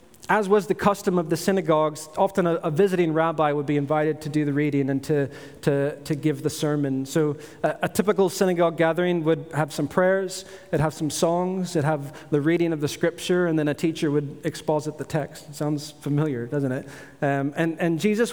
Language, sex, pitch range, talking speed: English, male, 155-180 Hz, 210 wpm